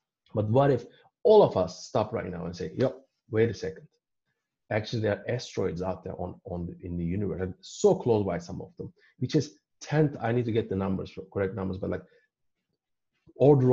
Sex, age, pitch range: male, 30-49, 95-120 Hz